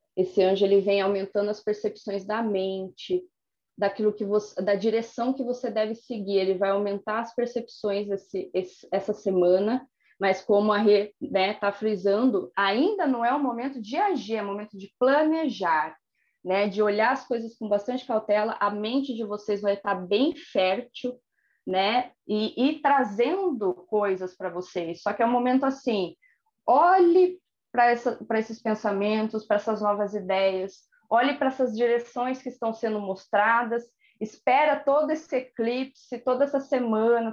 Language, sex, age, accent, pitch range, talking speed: Portuguese, female, 20-39, Brazilian, 200-255 Hz, 160 wpm